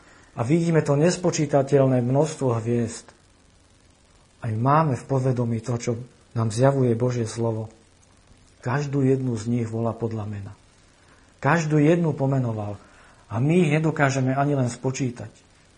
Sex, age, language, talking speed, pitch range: male, 50-69, Slovak, 125 wpm, 110-145 Hz